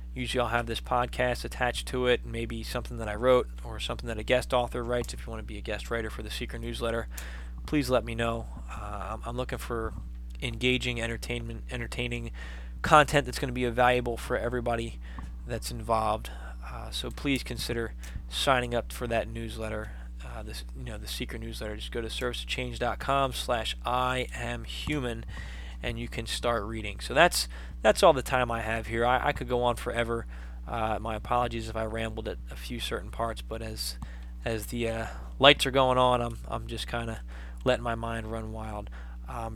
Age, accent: 20-39, American